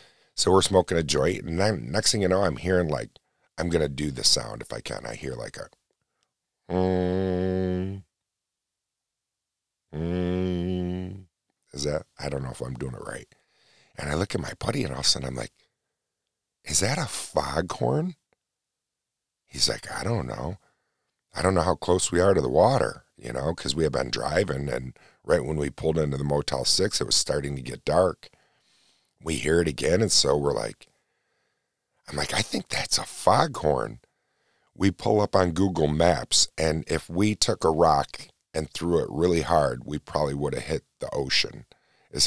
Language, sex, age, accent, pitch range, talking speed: English, male, 50-69, American, 70-90 Hz, 190 wpm